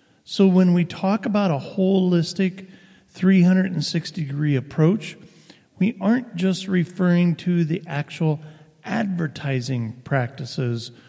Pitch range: 135-180 Hz